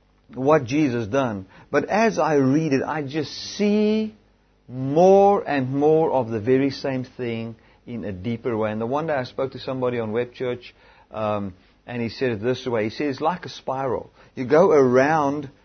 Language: English